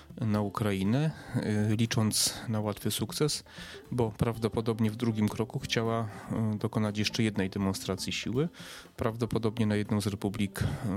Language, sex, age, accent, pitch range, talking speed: Polish, male, 30-49, native, 100-125 Hz, 120 wpm